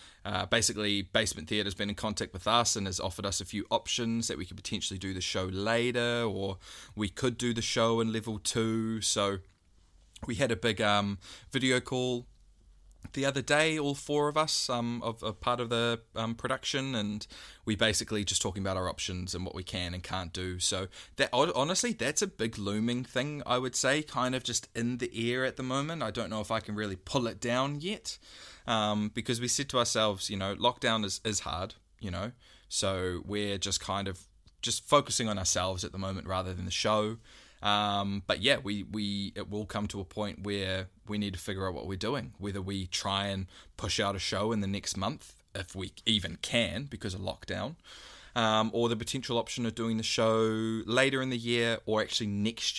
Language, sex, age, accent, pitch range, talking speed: English, male, 20-39, Australian, 95-120 Hz, 215 wpm